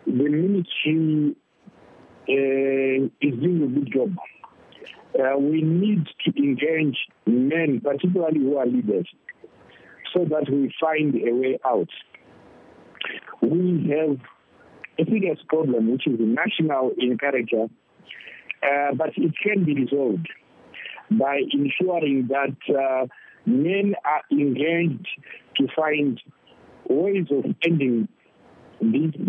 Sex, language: male, English